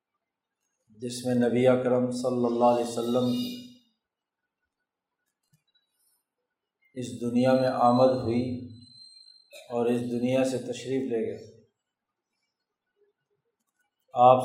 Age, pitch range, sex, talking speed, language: 50-69, 120-135 Hz, male, 85 wpm, Urdu